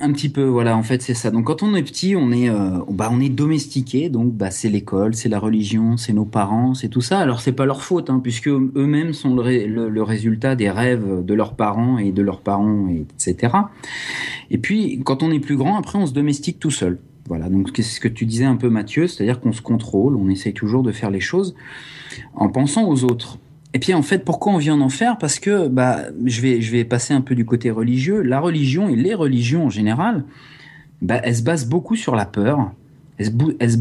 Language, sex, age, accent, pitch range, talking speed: French, male, 40-59, French, 110-145 Hz, 240 wpm